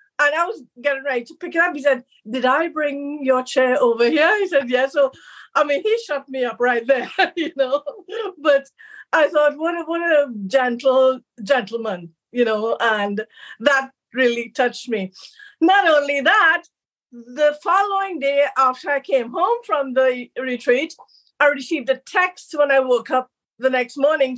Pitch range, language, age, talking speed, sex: 245-305 Hz, English, 50-69, 175 wpm, female